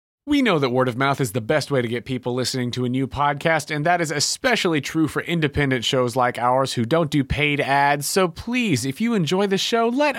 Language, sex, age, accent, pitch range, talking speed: English, male, 30-49, American, 130-190 Hz, 240 wpm